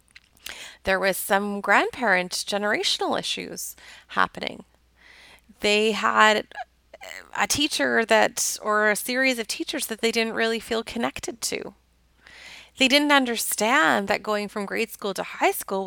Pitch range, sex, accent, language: 200-275 Hz, female, American, English